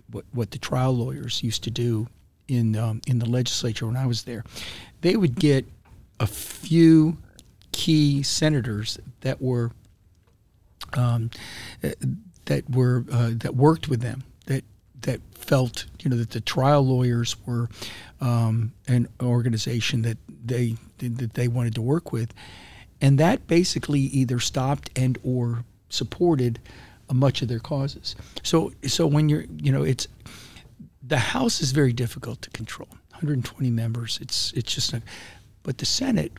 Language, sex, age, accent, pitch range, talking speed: English, male, 50-69, American, 115-130 Hz, 145 wpm